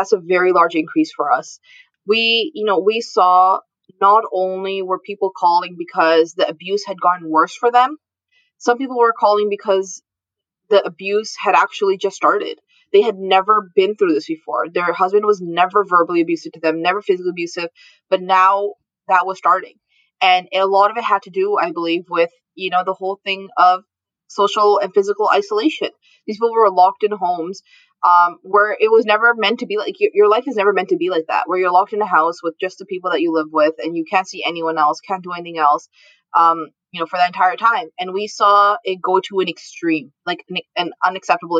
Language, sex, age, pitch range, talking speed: English, female, 20-39, 175-210 Hz, 210 wpm